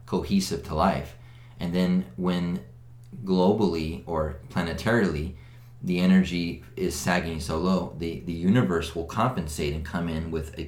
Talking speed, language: 140 wpm, English